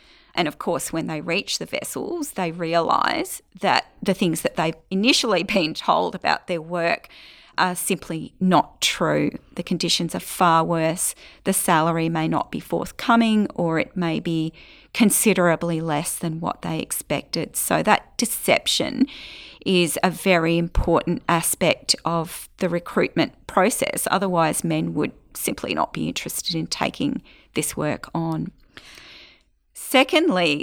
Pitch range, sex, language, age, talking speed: 175-245 Hz, female, English, 40-59, 140 wpm